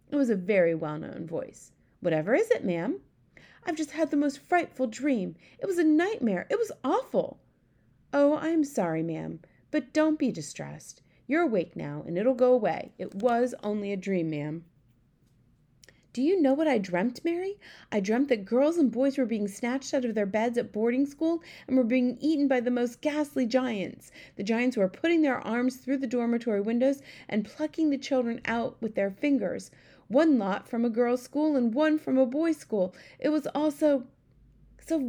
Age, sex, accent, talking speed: 30-49, female, American, 195 wpm